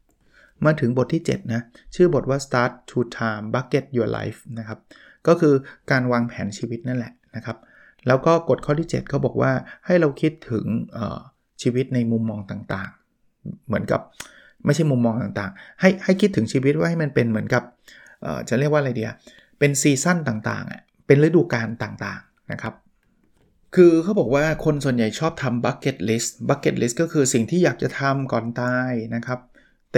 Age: 20-39